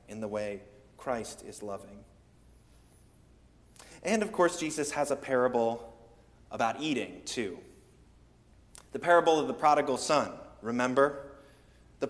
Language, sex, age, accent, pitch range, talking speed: English, male, 30-49, American, 115-175 Hz, 120 wpm